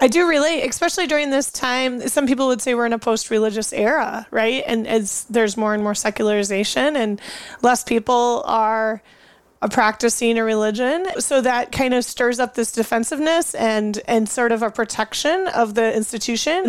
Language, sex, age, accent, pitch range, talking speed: English, female, 30-49, American, 225-275 Hz, 175 wpm